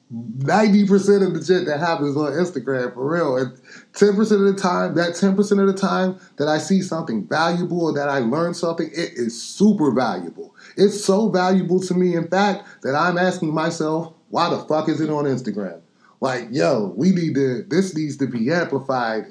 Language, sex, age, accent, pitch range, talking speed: English, male, 30-49, American, 135-175 Hz, 185 wpm